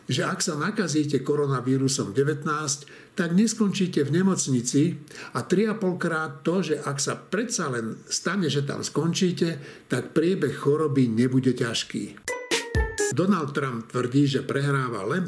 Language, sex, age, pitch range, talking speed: Slovak, male, 60-79, 135-175 Hz, 135 wpm